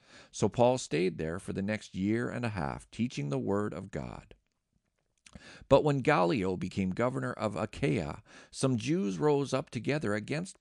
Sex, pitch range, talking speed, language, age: male, 95-140 Hz, 165 wpm, English, 50-69